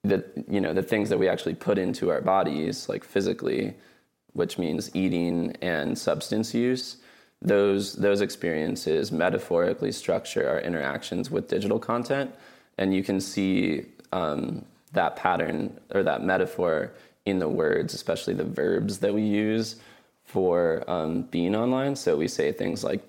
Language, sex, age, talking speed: English, male, 20-39, 150 wpm